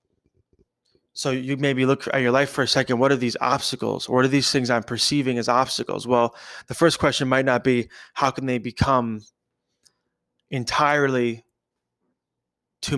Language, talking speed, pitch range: English, 160 wpm, 115-135 Hz